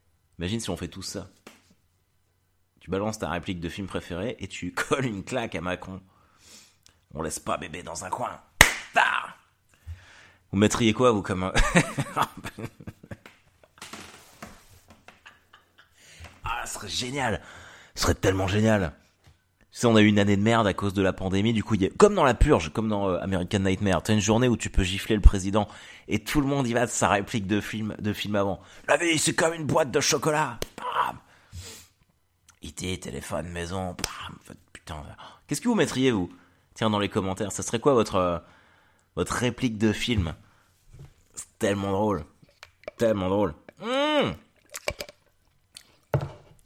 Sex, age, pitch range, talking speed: male, 30-49, 90-110 Hz, 165 wpm